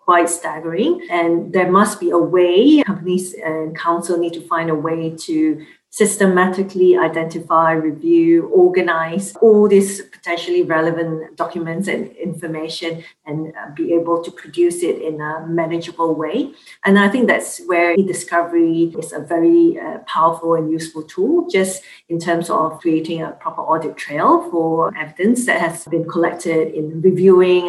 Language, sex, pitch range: Chinese, female, 165-185 Hz